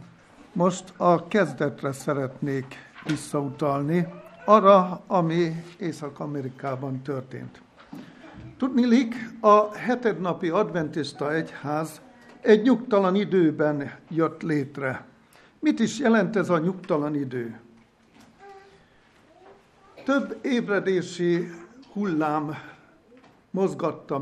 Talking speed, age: 75 wpm, 60-79